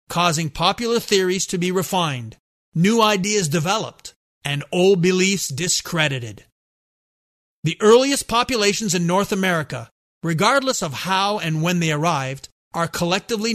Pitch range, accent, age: 155-200 Hz, American, 40-59